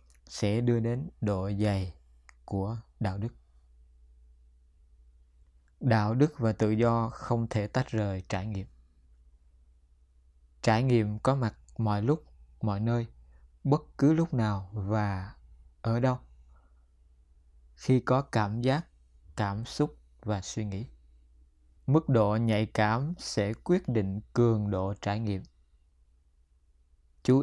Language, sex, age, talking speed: Vietnamese, male, 20-39, 120 wpm